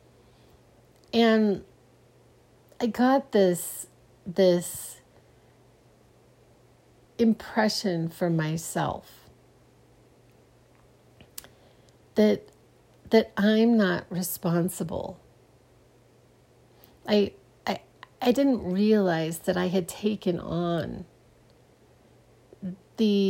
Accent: American